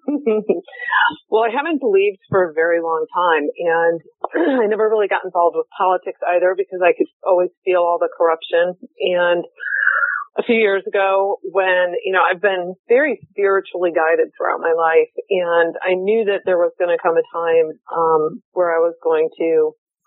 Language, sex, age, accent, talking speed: English, female, 30-49, American, 175 wpm